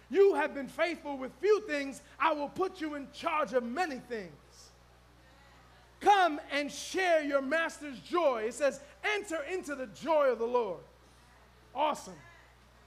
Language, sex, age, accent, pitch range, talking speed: English, male, 30-49, American, 260-330 Hz, 150 wpm